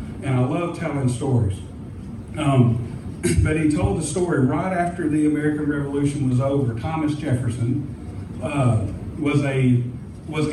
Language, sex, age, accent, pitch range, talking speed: English, male, 50-69, American, 120-155 Hz, 130 wpm